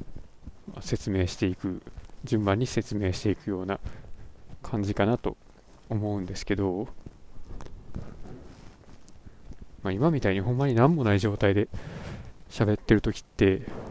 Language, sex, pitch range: Japanese, male, 95-130 Hz